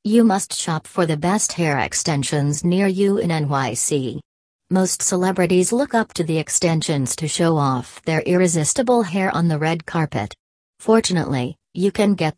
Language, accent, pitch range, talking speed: English, American, 145-180 Hz, 160 wpm